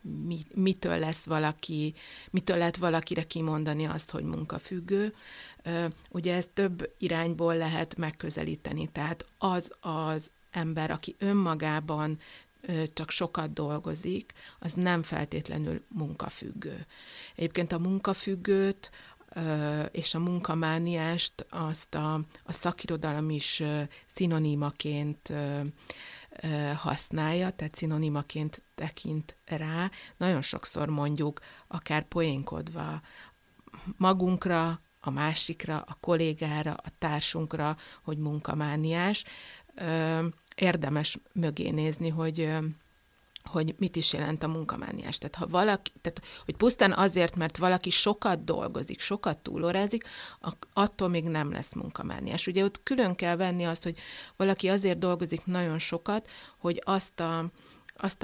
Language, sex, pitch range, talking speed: Hungarian, female, 155-180 Hz, 105 wpm